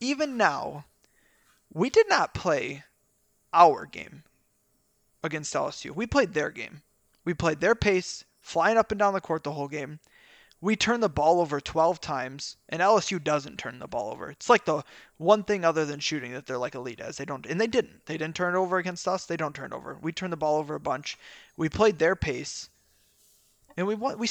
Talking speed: 215 wpm